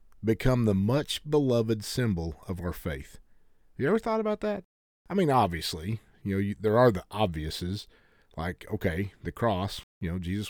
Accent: American